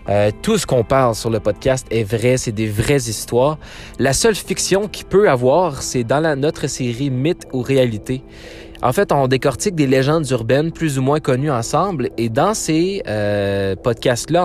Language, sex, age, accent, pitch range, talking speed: French, male, 20-39, Canadian, 110-140 Hz, 185 wpm